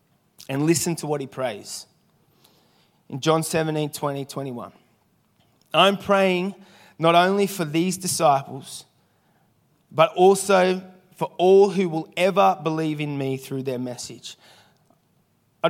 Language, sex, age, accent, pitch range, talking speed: English, male, 30-49, Australian, 145-185 Hz, 120 wpm